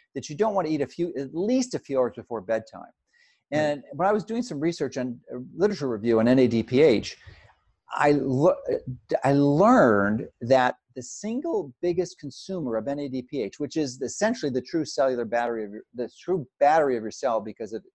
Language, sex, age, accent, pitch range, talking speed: English, male, 50-69, American, 125-170 Hz, 185 wpm